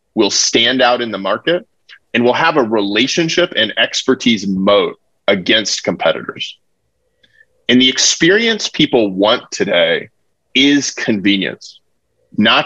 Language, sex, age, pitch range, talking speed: English, male, 30-49, 115-160 Hz, 120 wpm